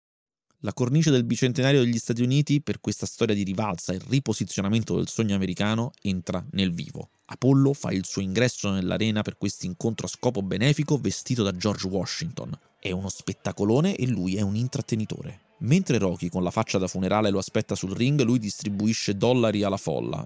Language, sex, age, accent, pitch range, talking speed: Italian, male, 20-39, native, 95-135 Hz, 180 wpm